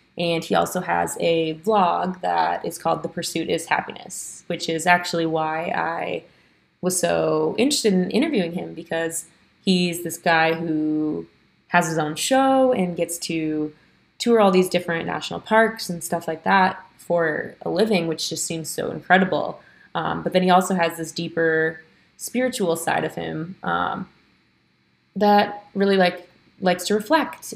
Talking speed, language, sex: 160 wpm, English, female